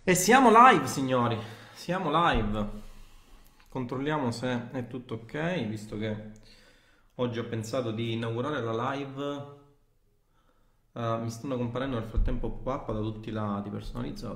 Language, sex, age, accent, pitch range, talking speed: Italian, male, 30-49, native, 110-135 Hz, 135 wpm